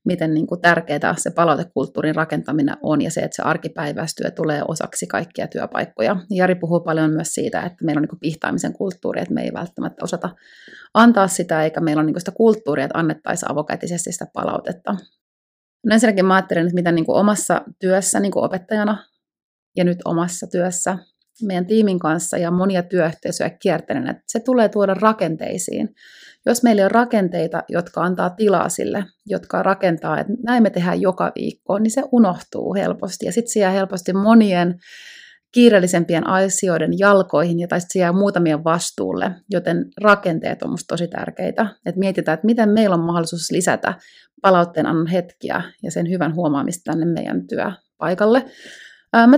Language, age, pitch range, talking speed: Finnish, 30-49, 170-215 Hz, 160 wpm